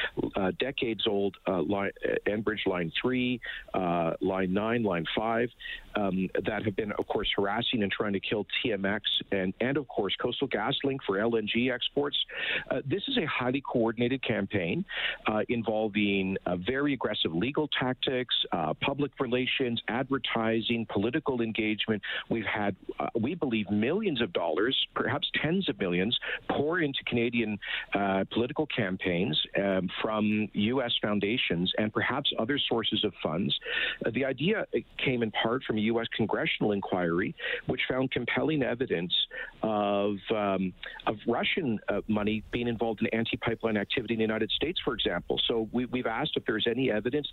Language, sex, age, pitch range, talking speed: English, male, 50-69, 105-125 Hz, 155 wpm